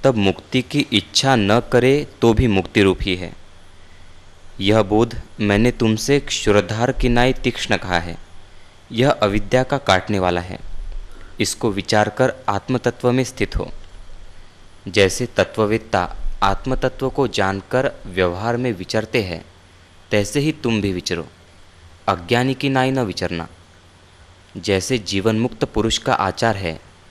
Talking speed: 135 wpm